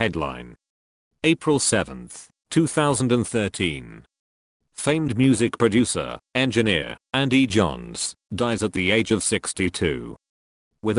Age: 40-59